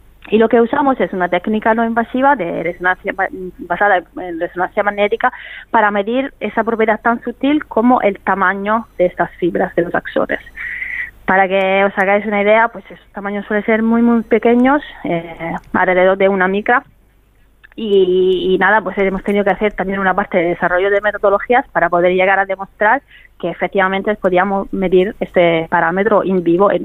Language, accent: Spanish, Spanish